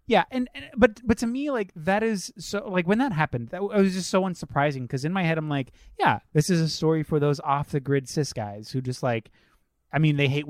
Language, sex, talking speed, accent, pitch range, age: English, male, 265 wpm, American, 130-160 Hz, 20-39